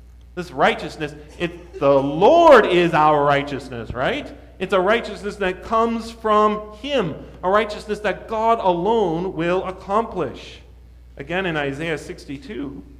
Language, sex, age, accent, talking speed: English, male, 40-59, American, 125 wpm